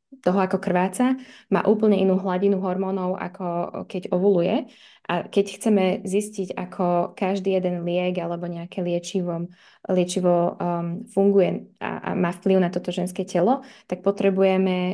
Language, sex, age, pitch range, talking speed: Slovak, female, 20-39, 180-200 Hz, 140 wpm